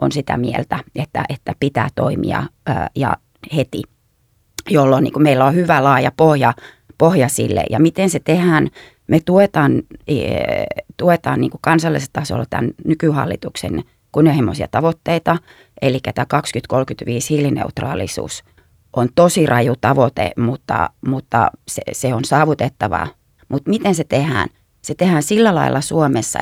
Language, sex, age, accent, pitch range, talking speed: Finnish, female, 30-49, native, 135-165 Hz, 120 wpm